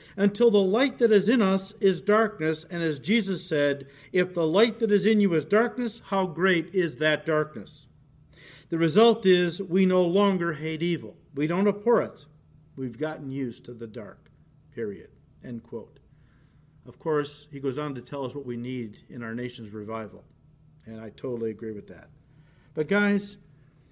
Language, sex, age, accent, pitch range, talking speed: English, male, 50-69, American, 145-200 Hz, 180 wpm